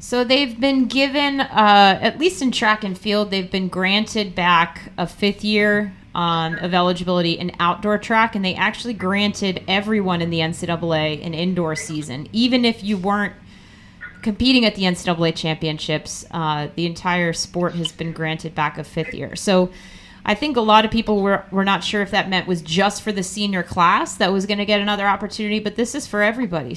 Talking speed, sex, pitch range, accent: 195 wpm, female, 170-210 Hz, American